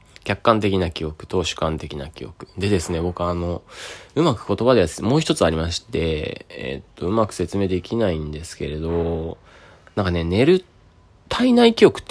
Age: 20-39